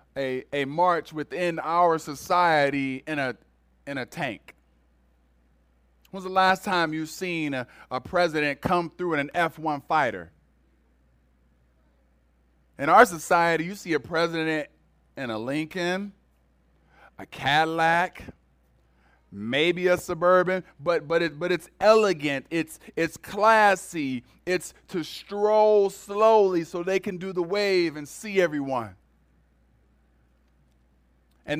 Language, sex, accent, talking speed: English, male, American, 120 wpm